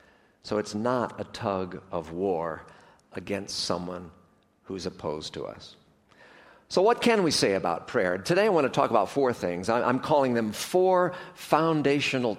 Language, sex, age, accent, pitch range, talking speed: English, male, 50-69, American, 105-165 Hz, 160 wpm